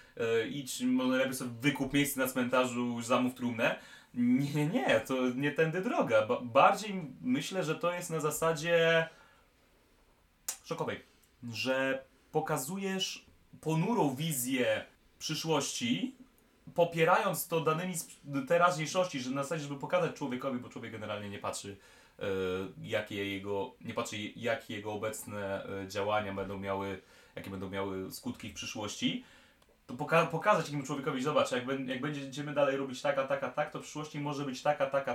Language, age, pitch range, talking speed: Polish, 30-49, 125-185 Hz, 145 wpm